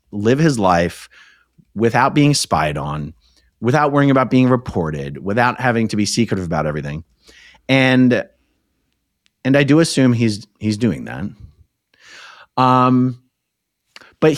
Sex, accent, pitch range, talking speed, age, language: male, American, 95-130 Hz, 125 wpm, 30-49, English